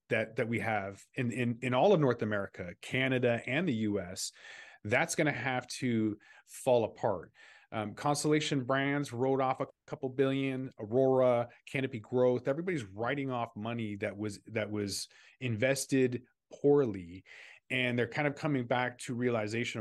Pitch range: 105-135 Hz